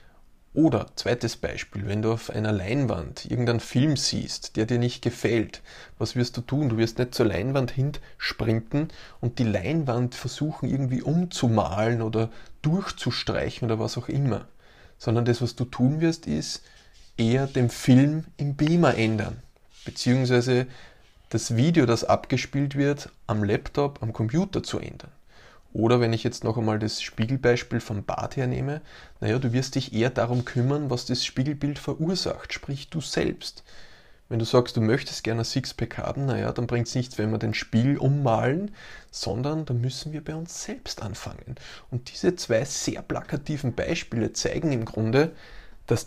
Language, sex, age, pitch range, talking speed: German, male, 20-39, 115-145 Hz, 160 wpm